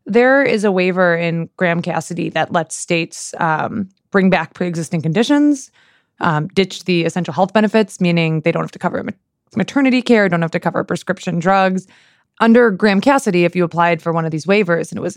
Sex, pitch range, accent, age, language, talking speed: female, 170-200 Hz, American, 20-39, English, 185 wpm